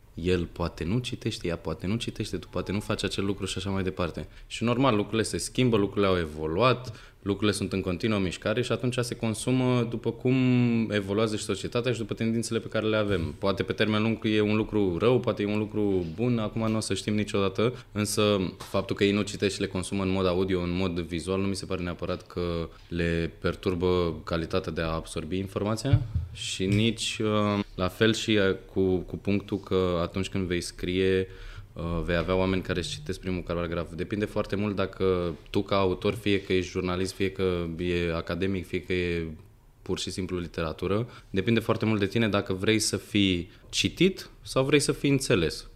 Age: 20-39